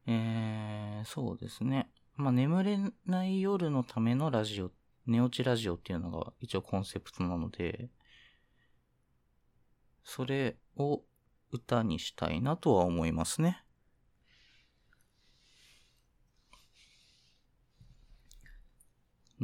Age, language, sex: 40-59, Japanese, male